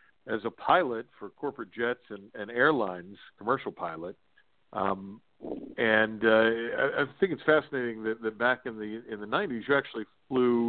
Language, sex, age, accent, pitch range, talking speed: English, male, 50-69, American, 110-135 Hz, 170 wpm